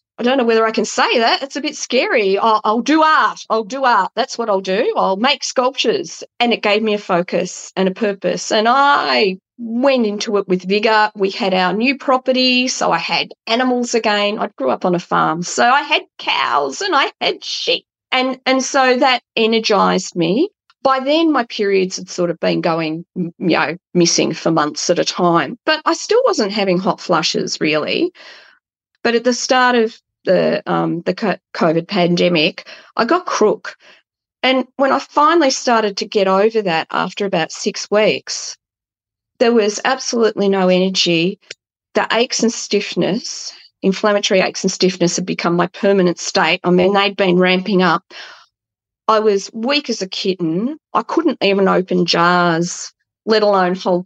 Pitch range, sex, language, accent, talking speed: 180-255 Hz, female, English, Australian, 180 wpm